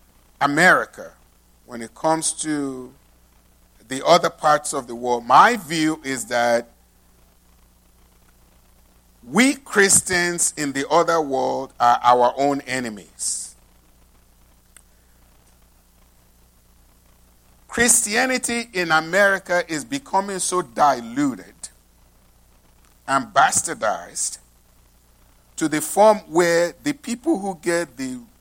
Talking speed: 90 wpm